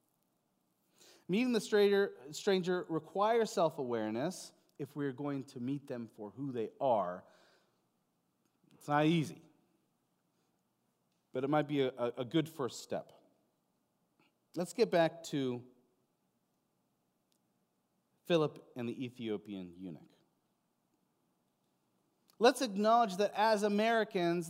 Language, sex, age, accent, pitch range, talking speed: English, male, 40-59, American, 130-205 Hz, 105 wpm